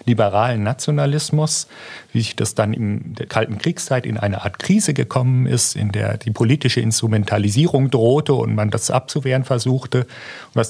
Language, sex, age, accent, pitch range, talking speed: German, male, 40-59, German, 110-140 Hz, 155 wpm